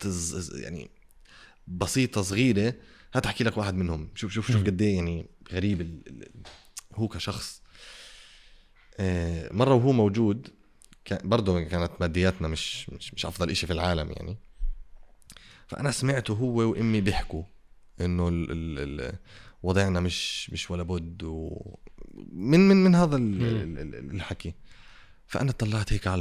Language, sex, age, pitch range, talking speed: Arabic, male, 30-49, 85-110 Hz, 110 wpm